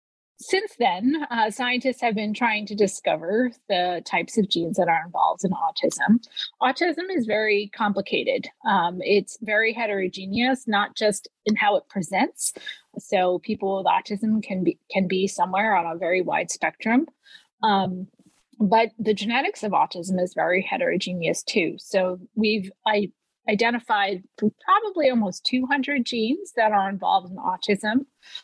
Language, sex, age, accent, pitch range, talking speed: English, female, 30-49, American, 190-240 Hz, 145 wpm